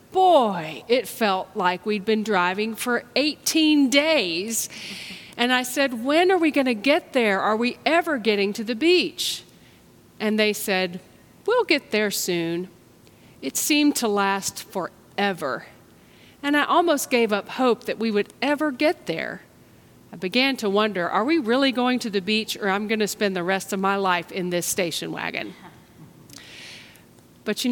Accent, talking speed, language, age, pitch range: American, 170 wpm, English, 40-59, 195-280 Hz